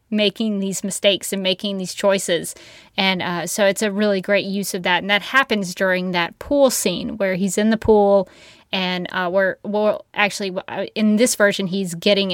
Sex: female